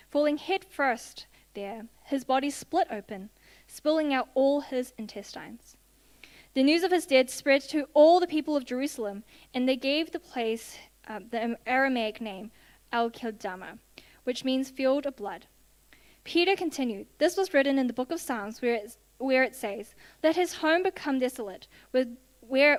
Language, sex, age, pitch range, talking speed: English, female, 10-29, 235-290 Hz, 160 wpm